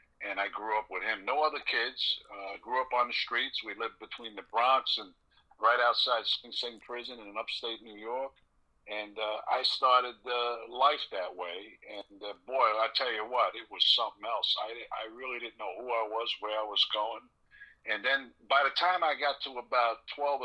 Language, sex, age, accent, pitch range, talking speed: English, male, 60-79, American, 110-135 Hz, 210 wpm